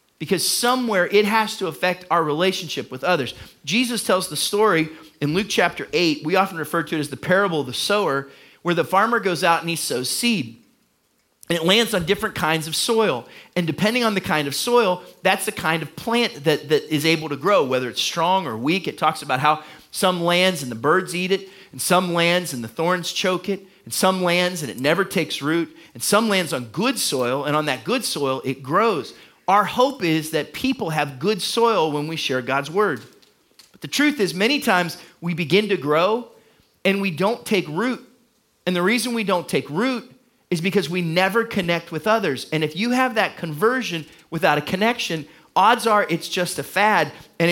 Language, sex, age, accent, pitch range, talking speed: English, male, 40-59, American, 155-210 Hz, 210 wpm